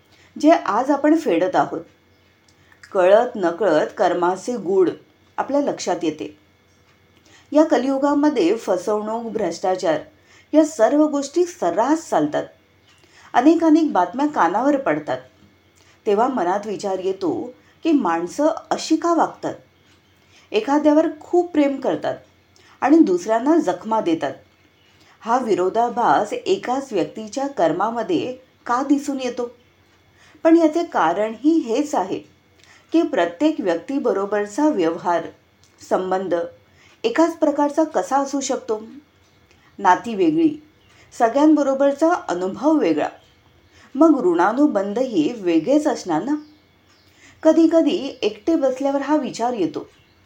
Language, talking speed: Marathi, 95 wpm